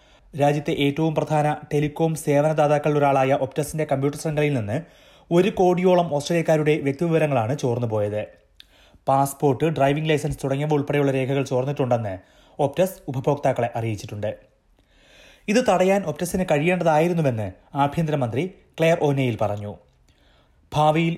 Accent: native